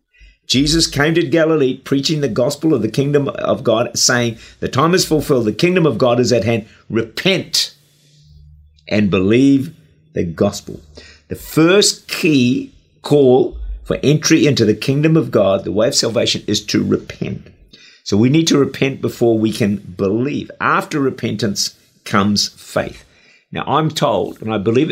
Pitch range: 100-145 Hz